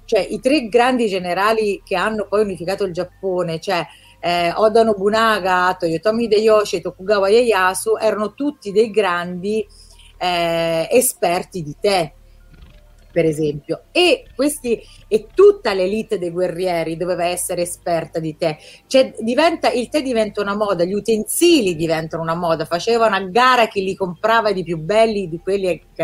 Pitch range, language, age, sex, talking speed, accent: 175-235 Hz, Italian, 30-49, female, 150 wpm, native